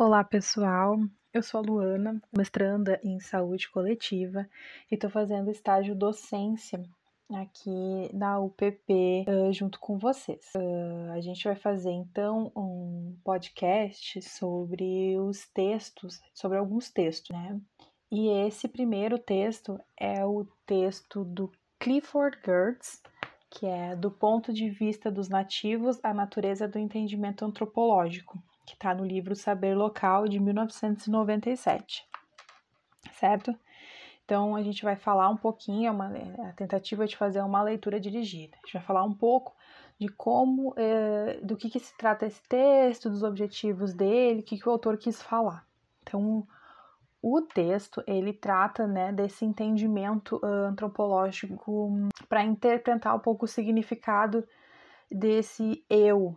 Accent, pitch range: Brazilian, 195-220 Hz